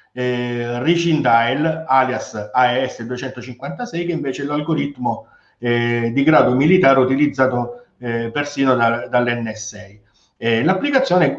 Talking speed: 100 wpm